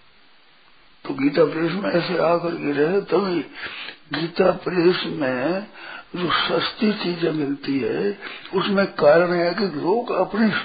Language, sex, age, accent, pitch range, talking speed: Hindi, male, 60-79, native, 160-190 Hz, 130 wpm